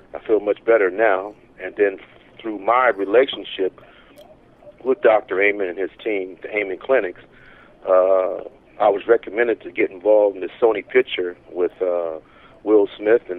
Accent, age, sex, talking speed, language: American, 50-69, male, 155 wpm, English